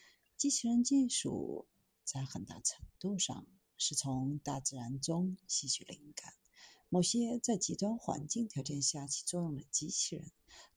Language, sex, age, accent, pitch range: Chinese, female, 50-69, native, 140-210 Hz